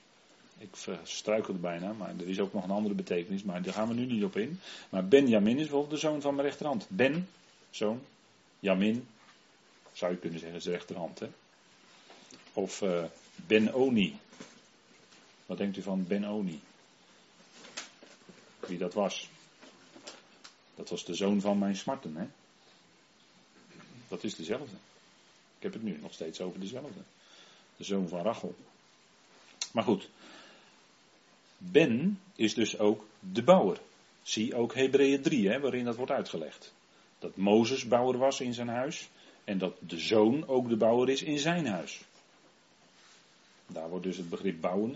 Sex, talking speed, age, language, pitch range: male, 155 wpm, 40-59, Dutch, 100-140 Hz